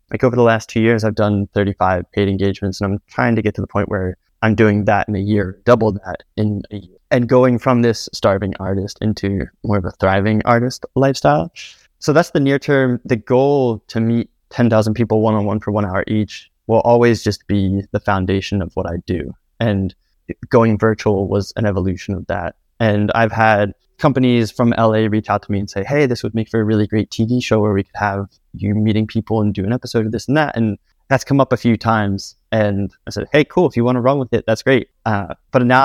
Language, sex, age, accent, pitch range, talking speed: English, male, 20-39, American, 100-120 Hz, 235 wpm